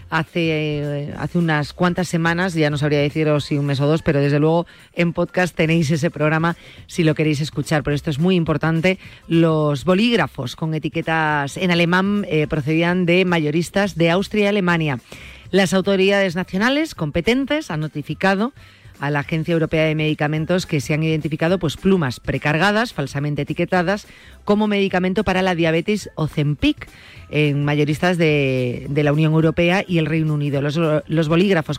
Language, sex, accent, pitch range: Spanish, female, Spanish, 155-185 Hz